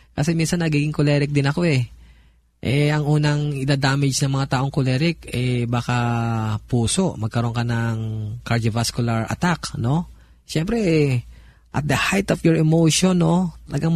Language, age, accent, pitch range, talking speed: Filipino, 20-39, native, 115-150 Hz, 145 wpm